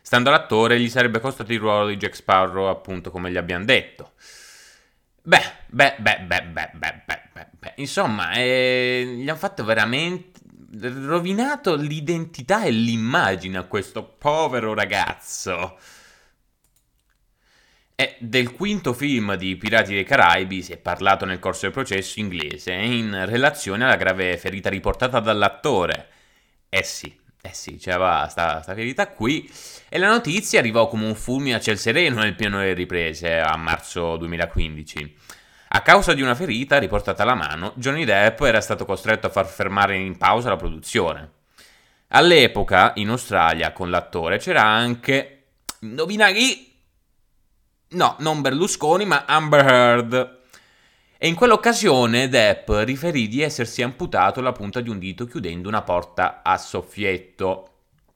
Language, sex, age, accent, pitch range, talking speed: Italian, male, 30-49, native, 95-130 Hz, 140 wpm